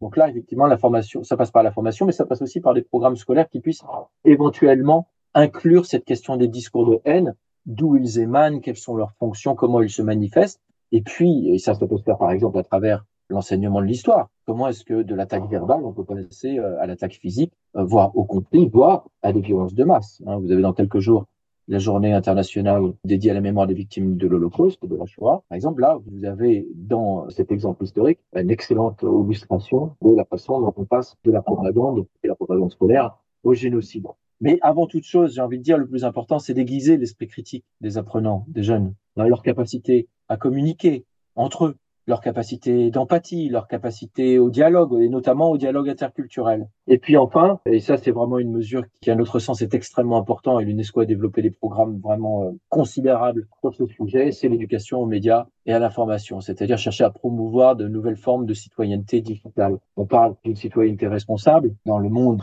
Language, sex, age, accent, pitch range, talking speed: French, male, 40-59, French, 105-130 Hz, 205 wpm